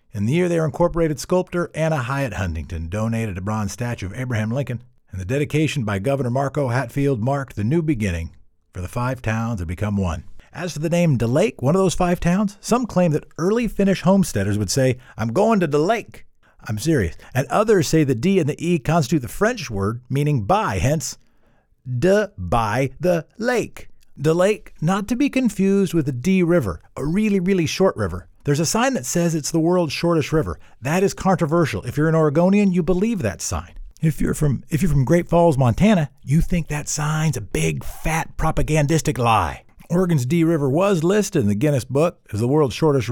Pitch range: 115-175 Hz